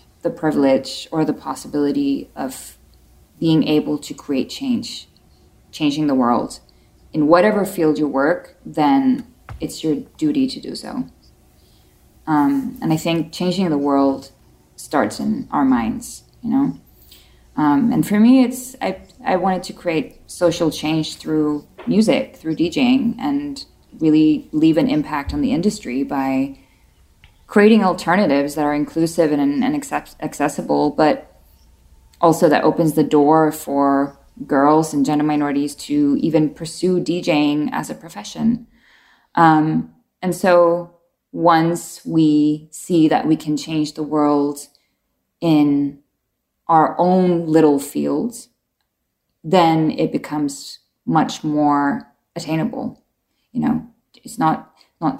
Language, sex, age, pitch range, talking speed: English, female, 20-39, 145-230 Hz, 130 wpm